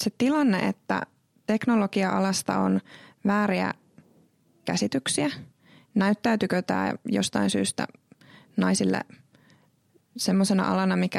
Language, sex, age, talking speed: Finnish, female, 20-39, 80 wpm